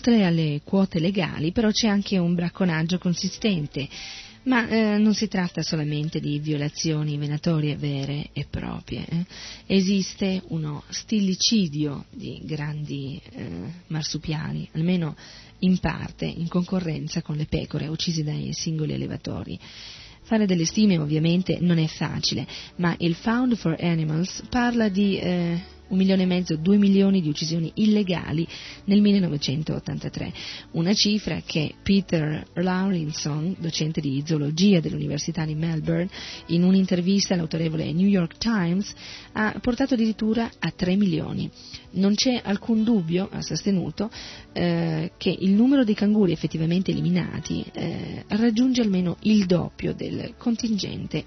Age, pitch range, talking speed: 30-49, 155-200 Hz, 130 wpm